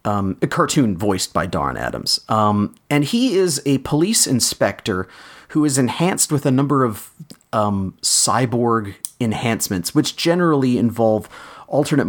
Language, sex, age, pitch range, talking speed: English, male, 30-49, 105-140 Hz, 140 wpm